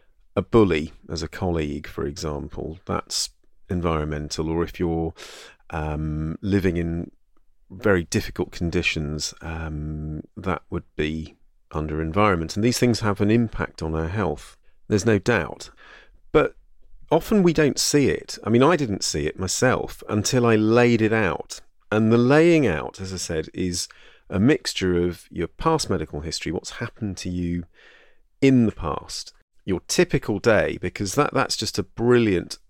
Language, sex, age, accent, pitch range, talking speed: English, male, 40-59, British, 85-115 Hz, 155 wpm